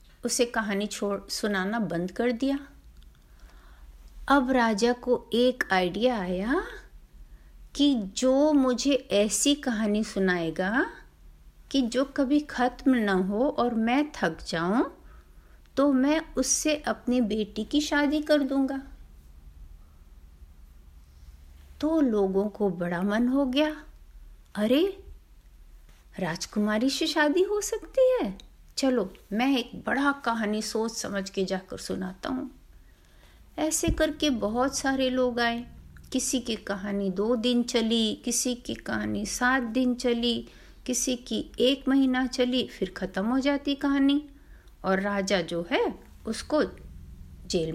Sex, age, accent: female, 50-69, native